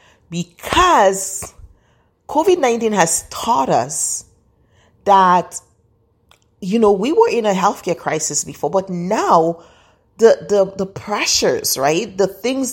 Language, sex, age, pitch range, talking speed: English, female, 30-49, 175-240 Hz, 115 wpm